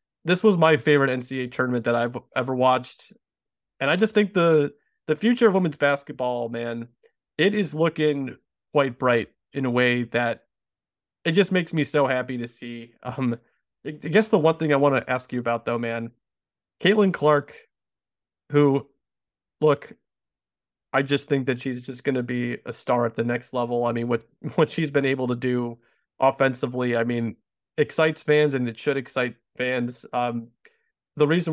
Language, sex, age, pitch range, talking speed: English, male, 30-49, 120-150 Hz, 175 wpm